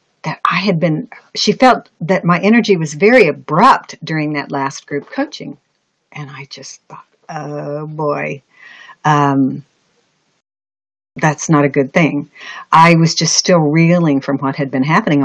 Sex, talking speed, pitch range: female, 155 wpm, 145-195 Hz